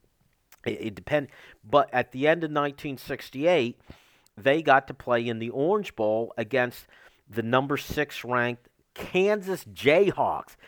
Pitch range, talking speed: 120-160 Hz, 125 wpm